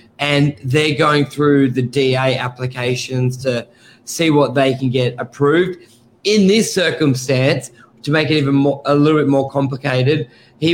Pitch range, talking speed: 130-145 Hz, 155 wpm